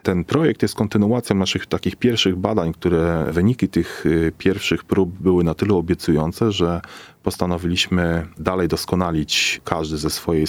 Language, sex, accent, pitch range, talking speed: Polish, male, native, 80-100 Hz, 135 wpm